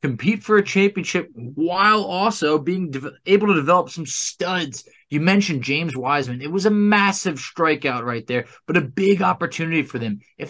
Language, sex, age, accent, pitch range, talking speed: English, male, 20-39, American, 140-195 Hz, 175 wpm